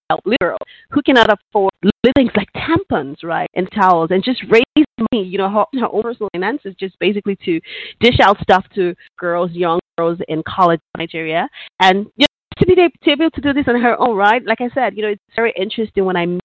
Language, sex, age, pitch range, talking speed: English, female, 30-49, 180-240 Hz, 215 wpm